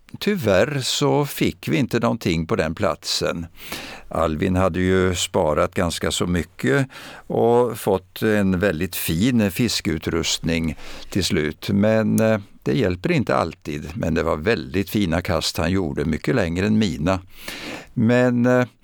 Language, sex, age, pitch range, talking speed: Swedish, male, 60-79, 85-100 Hz, 135 wpm